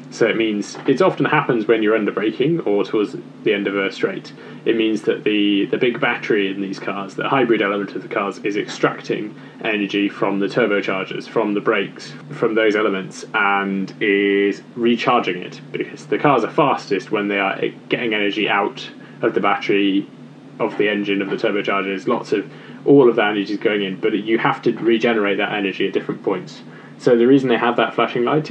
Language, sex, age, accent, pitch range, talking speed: English, male, 20-39, British, 100-120 Hz, 200 wpm